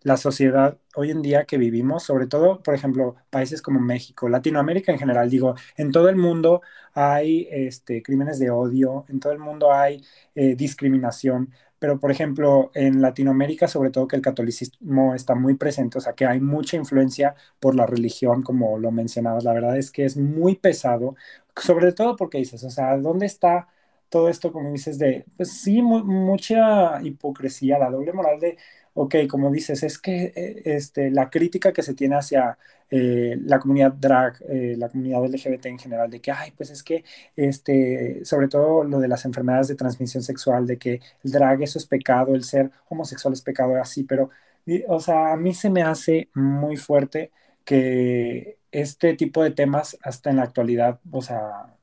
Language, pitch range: Spanish, 130-155 Hz